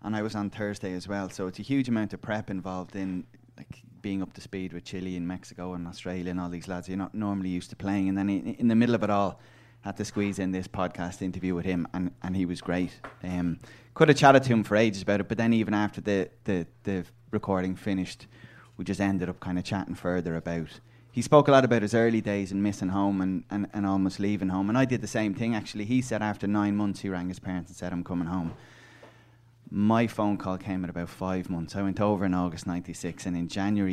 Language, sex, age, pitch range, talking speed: English, male, 20-39, 90-110 Hz, 255 wpm